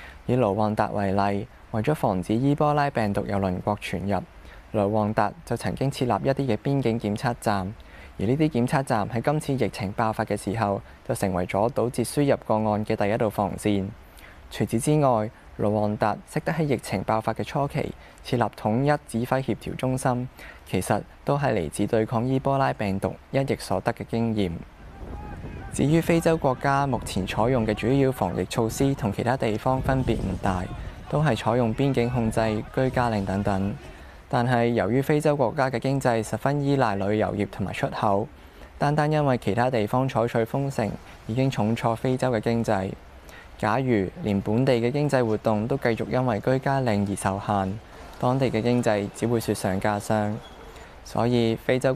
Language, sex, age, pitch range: Chinese, male, 20-39, 100-130 Hz